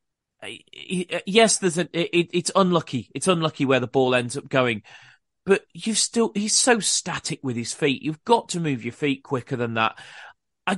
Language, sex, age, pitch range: English, male, 30-49, 130-170 Hz